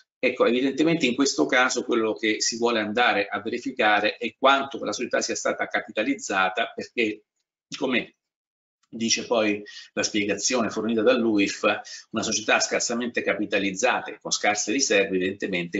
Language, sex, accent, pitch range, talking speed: Italian, male, native, 95-120 Hz, 135 wpm